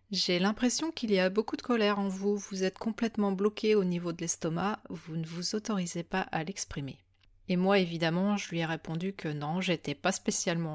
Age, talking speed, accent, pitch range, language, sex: 30-49, 205 wpm, French, 165-205 Hz, French, female